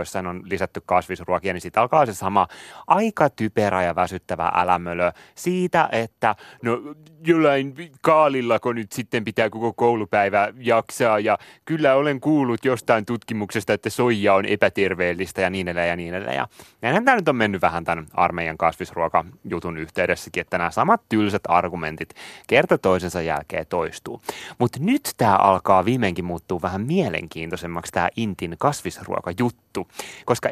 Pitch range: 95-140 Hz